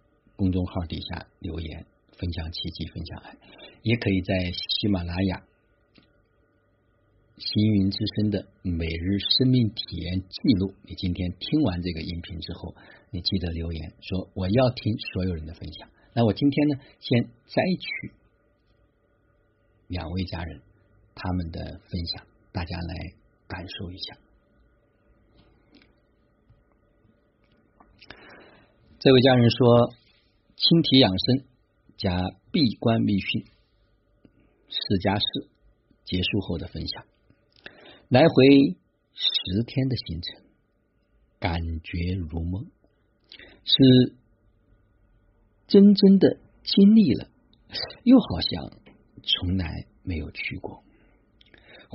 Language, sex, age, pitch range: Chinese, male, 50-69, 90-120 Hz